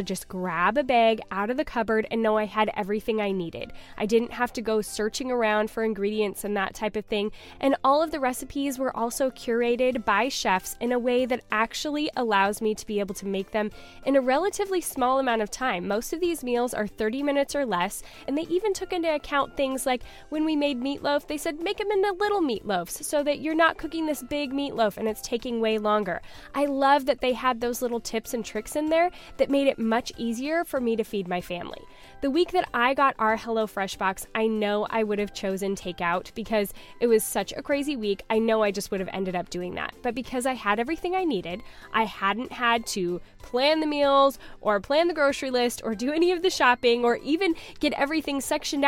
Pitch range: 215-285 Hz